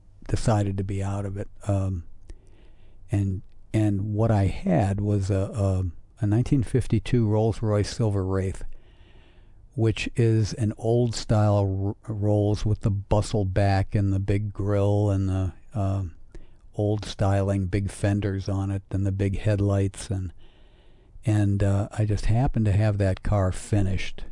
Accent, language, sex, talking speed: American, English, male, 150 wpm